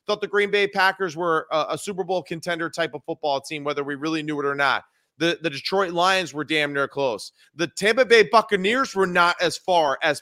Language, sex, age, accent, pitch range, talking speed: English, male, 30-49, American, 150-180 Hz, 230 wpm